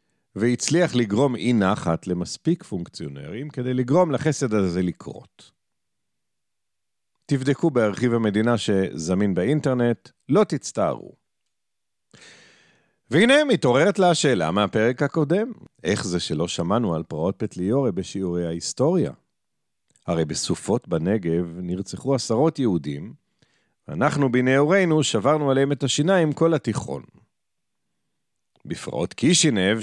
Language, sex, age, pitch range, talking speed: Hebrew, male, 50-69, 100-160 Hz, 100 wpm